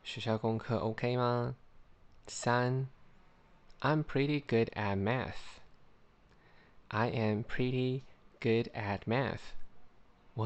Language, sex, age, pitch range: Chinese, male, 20-39, 105-130 Hz